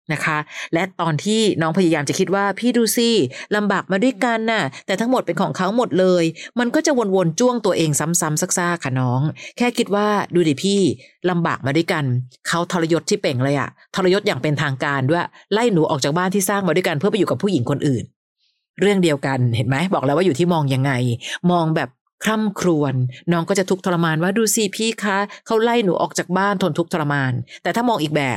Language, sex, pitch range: Thai, female, 145-195 Hz